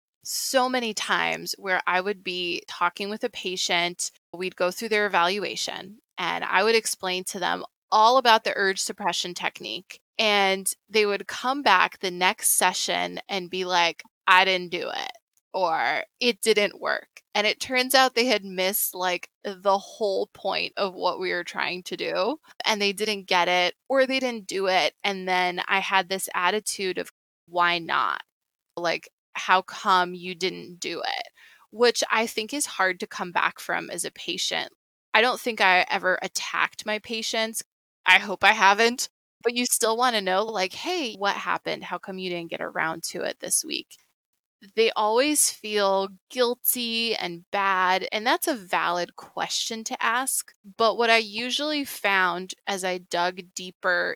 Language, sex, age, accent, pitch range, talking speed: English, female, 20-39, American, 185-230 Hz, 175 wpm